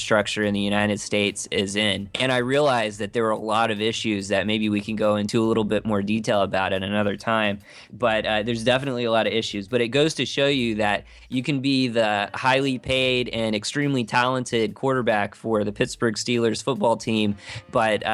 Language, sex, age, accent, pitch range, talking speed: English, male, 20-39, American, 105-125 Hz, 210 wpm